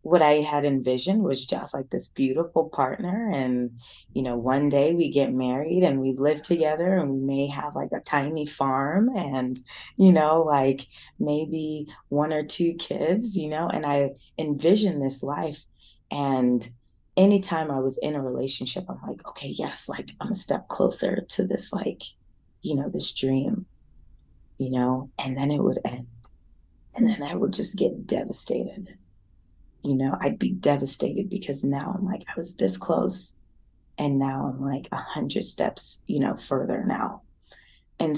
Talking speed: 170 wpm